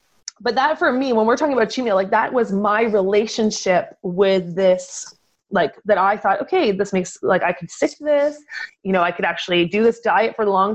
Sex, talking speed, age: female, 230 wpm, 30-49